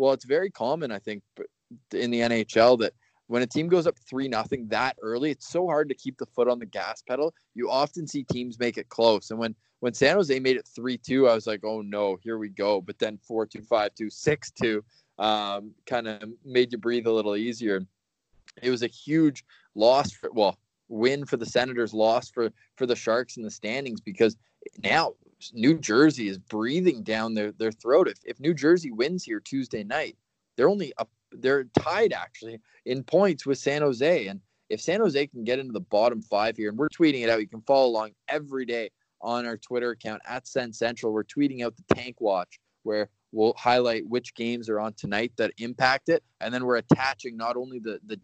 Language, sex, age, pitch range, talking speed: English, male, 20-39, 110-135 Hz, 210 wpm